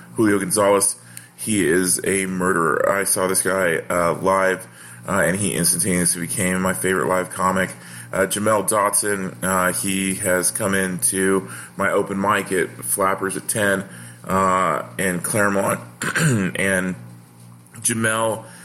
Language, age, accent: English, 30-49, American